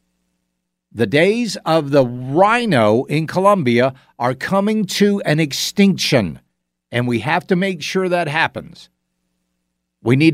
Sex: male